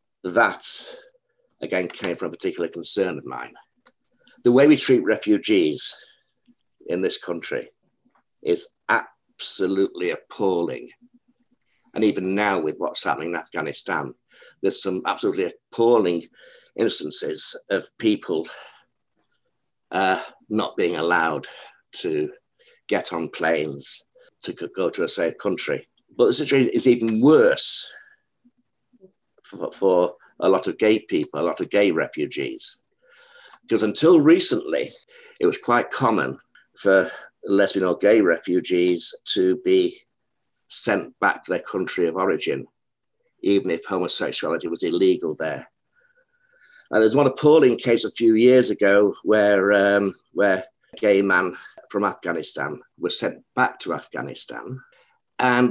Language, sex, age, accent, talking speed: English, male, 60-79, British, 125 wpm